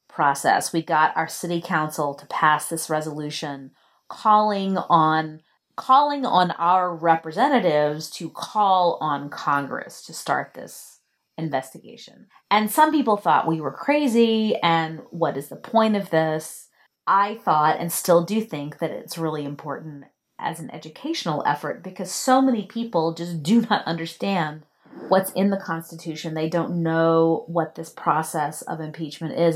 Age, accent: 30-49, American